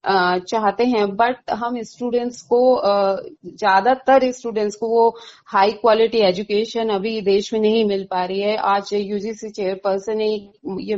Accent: native